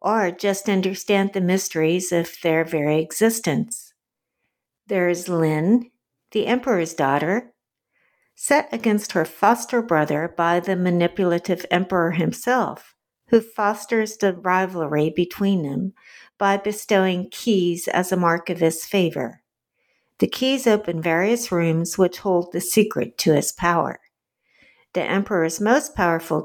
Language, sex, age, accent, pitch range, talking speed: English, female, 60-79, American, 170-215 Hz, 125 wpm